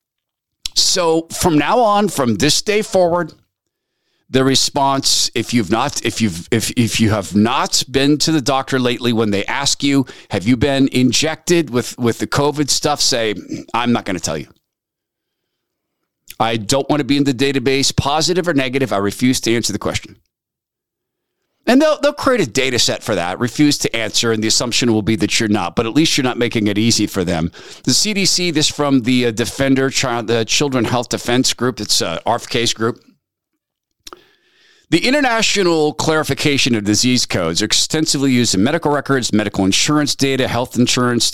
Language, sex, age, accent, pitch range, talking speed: English, male, 40-59, American, 115-145 Hz, 185 wpm